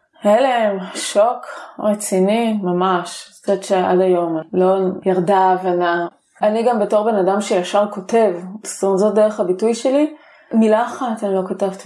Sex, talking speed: female, 140 wpm